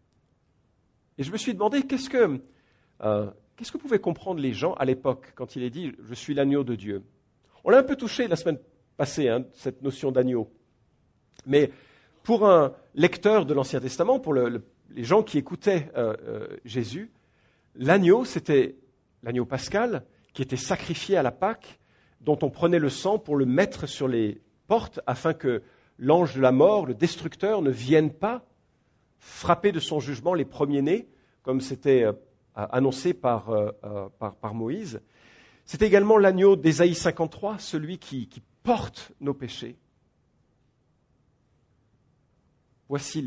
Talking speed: 150 wpm